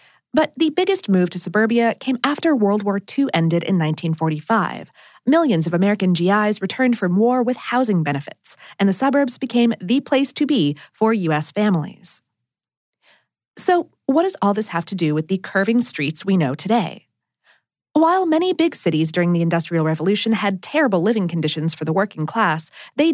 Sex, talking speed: female, 175 wpm